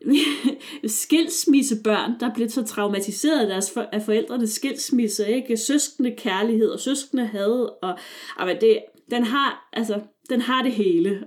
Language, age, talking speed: Danish, 30-49, 140 wpm